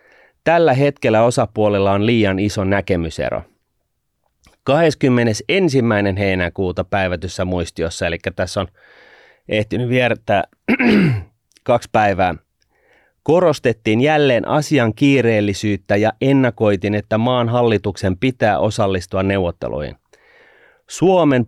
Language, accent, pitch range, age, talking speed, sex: Finnish, native, 100-130 Hz, 30-49, 85 wpm, male